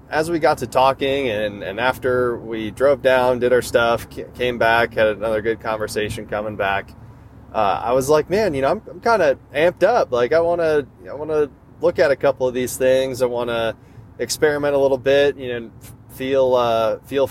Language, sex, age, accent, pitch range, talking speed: English, male, 20-39, American, 110-130 Hz, 210 wpm